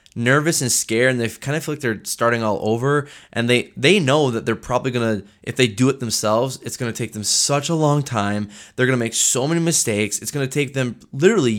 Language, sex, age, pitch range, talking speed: English, male, 20-39, 105-130 Hz, 235 wpm